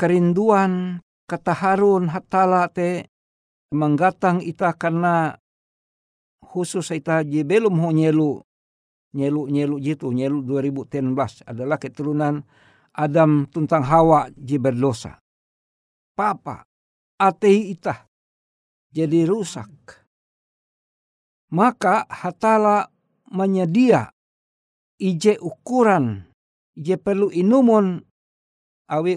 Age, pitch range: 60-79, 145-195 Hz